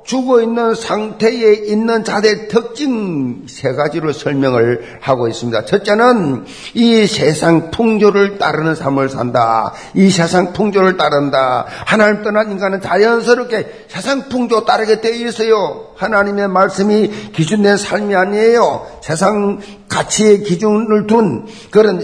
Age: 50-69